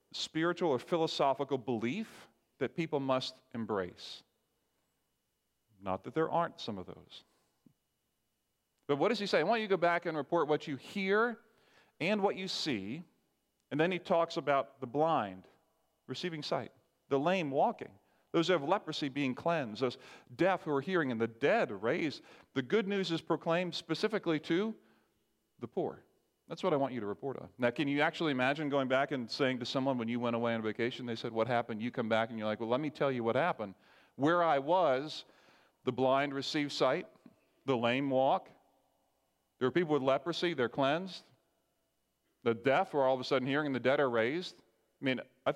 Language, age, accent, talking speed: English, 40-59, American, 190 wpm